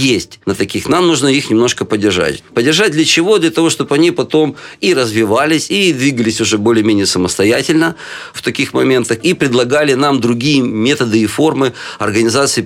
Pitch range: 105-125 Hz